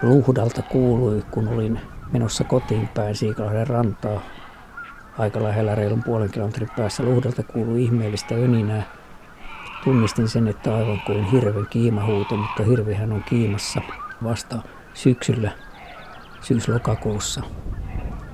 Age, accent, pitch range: 50-69, native, 105-120 Hz